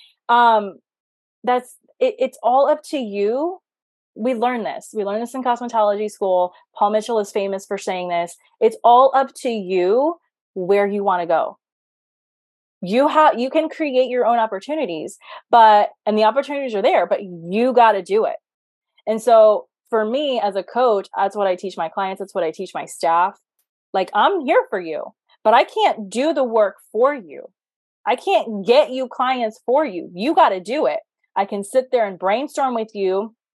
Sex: female